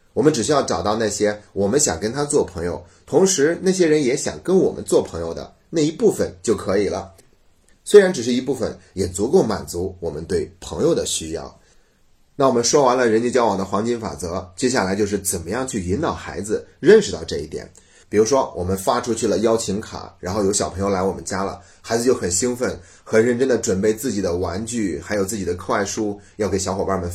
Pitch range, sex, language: 95-125 Hz, male, Chinese